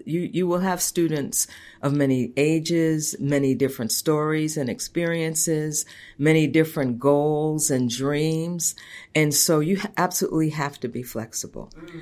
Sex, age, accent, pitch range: female, 50-69, American, 135-165 Hz